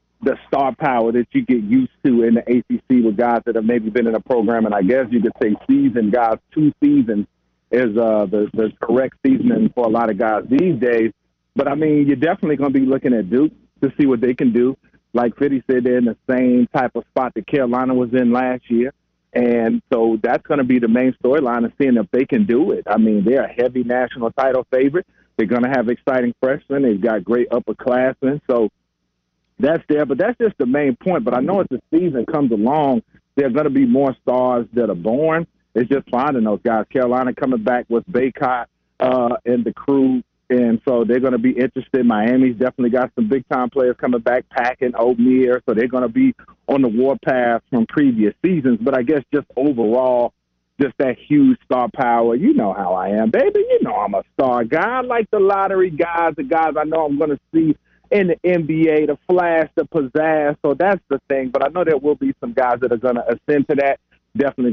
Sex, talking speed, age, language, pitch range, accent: male, 225 wpm, 40-59, English, 120-145 Hz, American